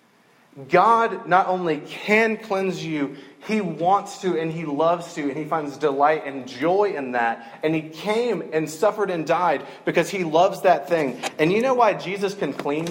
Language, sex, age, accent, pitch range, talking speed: English, male, 30-49, American, 145-195 Hz, 185 wpm